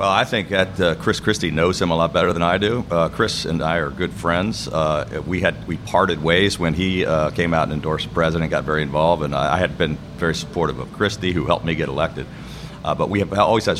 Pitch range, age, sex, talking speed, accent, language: 75-90 Hz, 40-59, male, 260 wpm, American, English